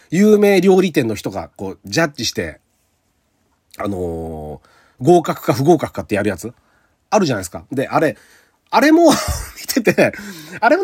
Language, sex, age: Japanese, male, 40-59